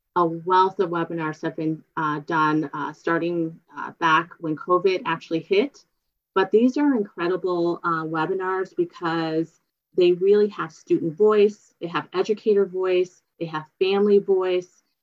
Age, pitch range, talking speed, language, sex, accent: 30-49, 165-205 Hz, 145 wpm, English, female, American